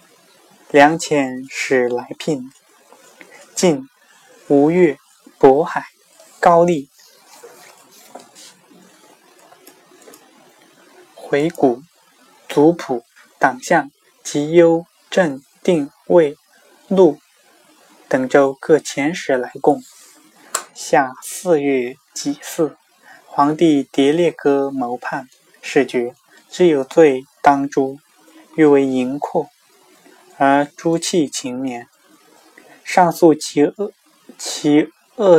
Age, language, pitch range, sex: 20-39, Chinese, 135-170 Hz, male